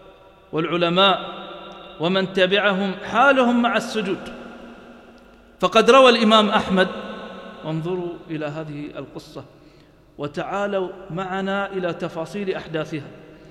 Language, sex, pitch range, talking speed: English, male, 165-215 Hz, 85 wpm